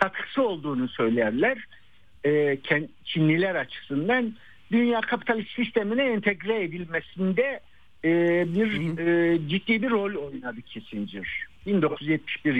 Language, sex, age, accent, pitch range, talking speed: Turkish, male, 60-79, native, 145-205 Hz, 80 wpm